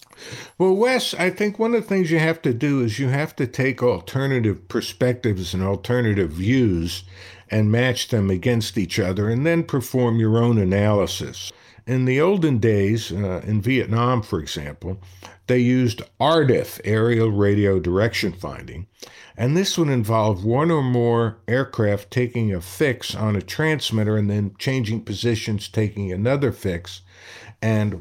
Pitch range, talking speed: 100-130 Hz, 155 wpm